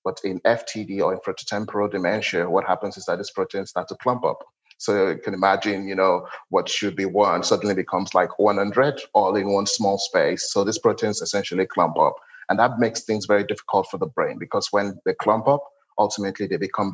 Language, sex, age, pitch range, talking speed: English, male, 30-49, 95-115 Hz, 215 wpm